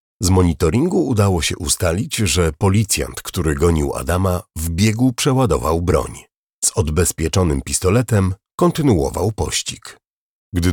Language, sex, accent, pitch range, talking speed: Polish, male, native, 80-105 Hz, 110 wpm